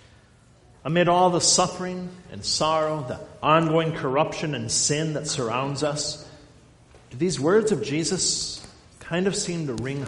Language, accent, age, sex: English, American, 50-69, male